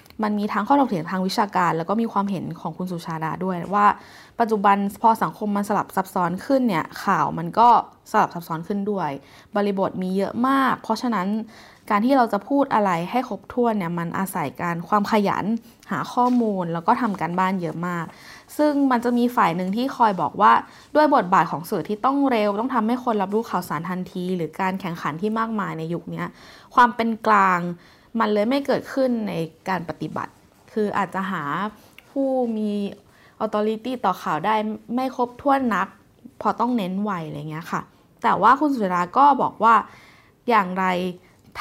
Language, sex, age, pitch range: Thai, female, 20-39, 180-235 Hz